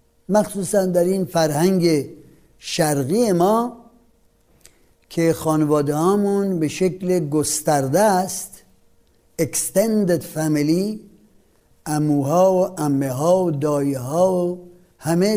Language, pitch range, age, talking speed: Persian, 155-200 Hz, 60-79, 90 wpm